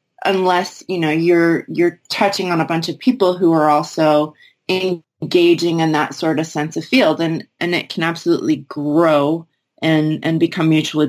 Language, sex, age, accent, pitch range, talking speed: English, female, 30-49, American, 155-190 Hz, 180 wpm